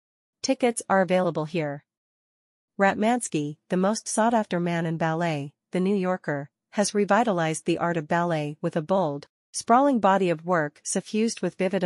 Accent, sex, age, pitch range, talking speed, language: American, female, 40-59, 165-200 Hz, 150 wpm, English